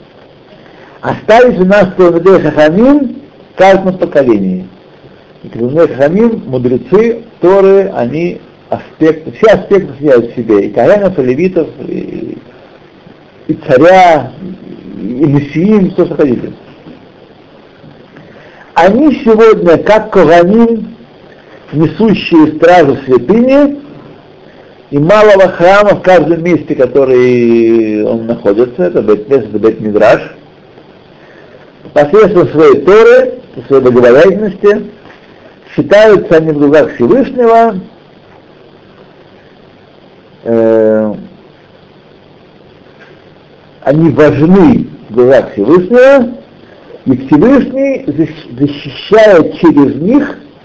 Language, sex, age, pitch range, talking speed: Russian, male, 60-79, 140-215 Hz, 90 wpm